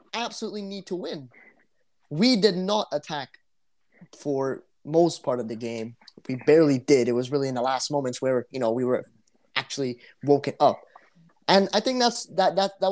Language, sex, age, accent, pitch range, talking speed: English, male, 20-39, American, 135-185 Hz, 180 wpm